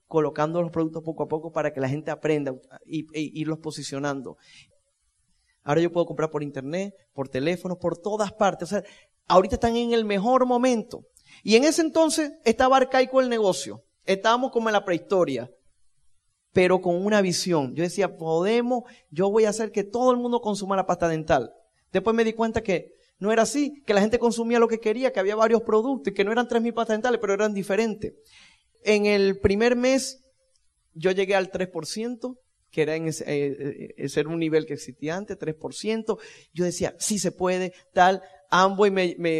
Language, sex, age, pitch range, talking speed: Spanish, male, 30-49, 160-230 Hz, 190 wpm